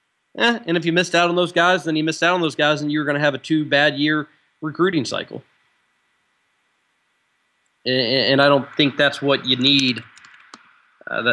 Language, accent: English, American